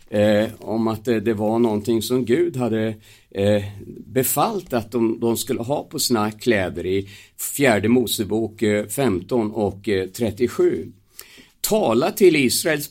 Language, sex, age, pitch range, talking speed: Swedish, male, 50-69, 110-180 Hz, 145 wpm